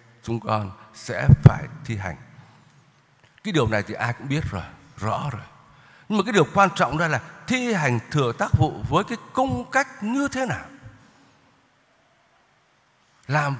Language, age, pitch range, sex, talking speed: Vietnamese, 60-79, 125-190 Hz, male, 165 wpm